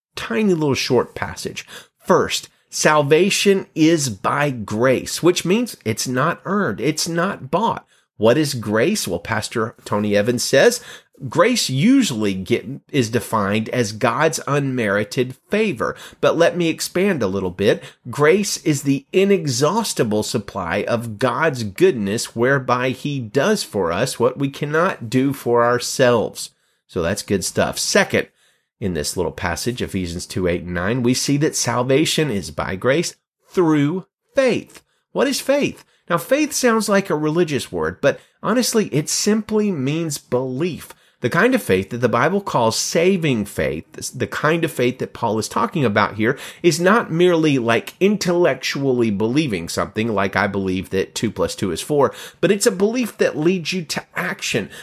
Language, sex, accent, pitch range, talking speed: English, male, American, 115-180 Hz, 155 wpm